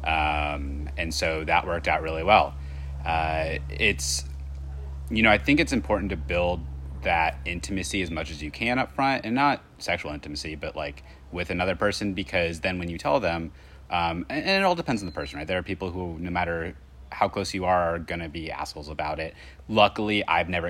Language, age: English, 30-49